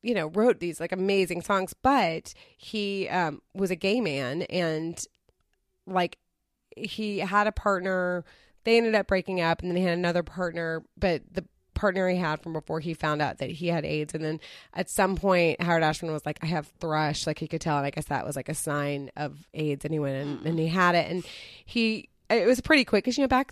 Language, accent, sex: English, American, female